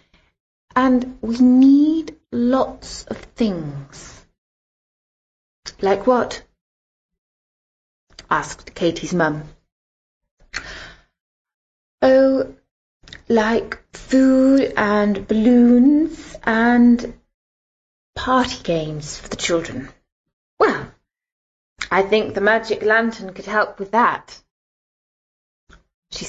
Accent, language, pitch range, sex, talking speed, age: British, English, 180-245 Hz, female, 75 wpm, 20-39